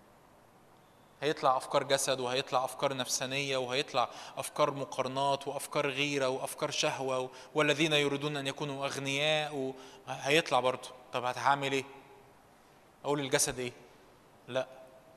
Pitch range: 140-205 Hz